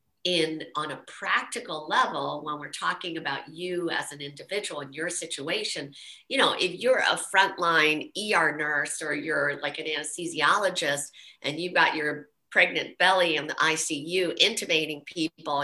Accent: American